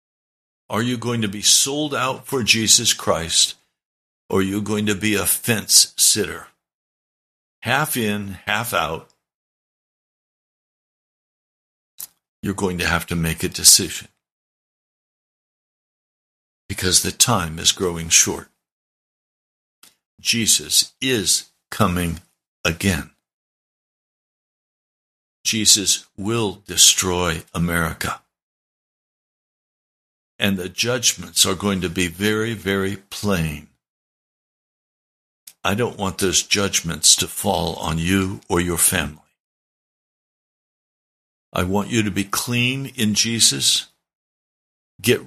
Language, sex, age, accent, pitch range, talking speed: English, male, 60-79, American, 85-115 Hz, 100 wpm